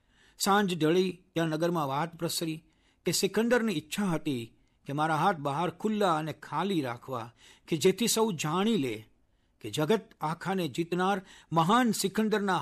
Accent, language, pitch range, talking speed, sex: native, Gujarati, 130-195 Hz, 140 wpm, male